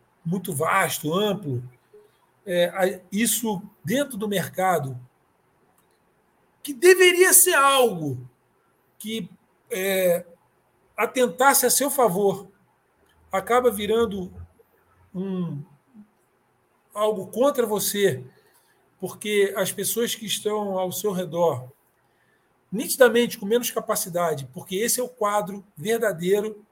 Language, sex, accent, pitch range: Portuguese, male, Brazilian, 180-235 Hz